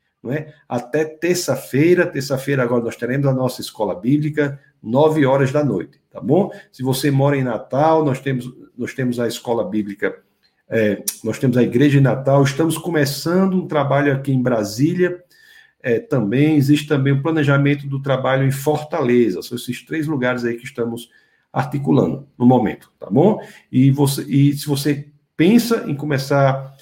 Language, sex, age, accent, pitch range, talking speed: Portuguese, male, 50-69, Brazilian, 125-150 Hz, 150 wpm